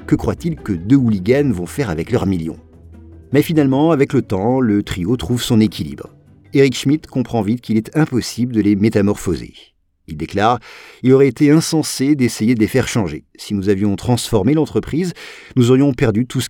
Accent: French